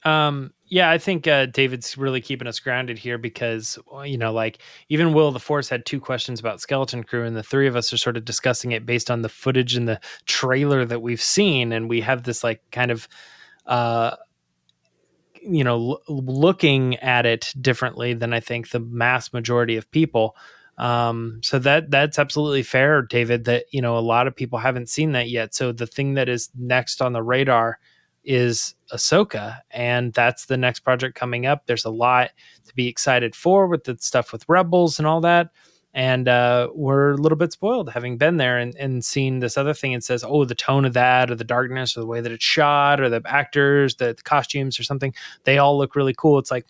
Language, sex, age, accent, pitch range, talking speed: English, male, 20-39, American, 120-145 Hz, 210 wpm